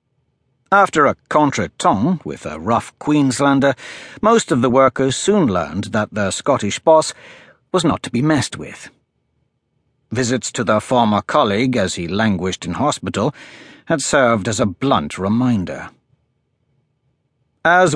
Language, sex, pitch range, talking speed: English, male, 110-145 Hz, 135 wpm